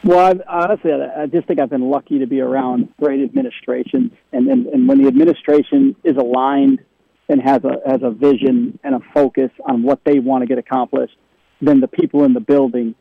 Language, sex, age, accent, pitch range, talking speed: English, male, 40-59, American, 130-175 Hz, 205 wpm